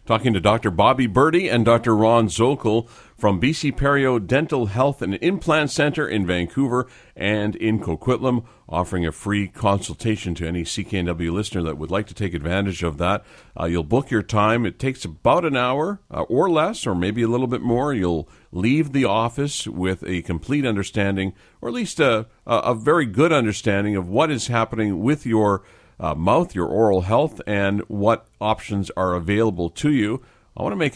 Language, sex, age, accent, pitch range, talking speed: English, male, 50-69, American, 90-115 Hz, 185 wpm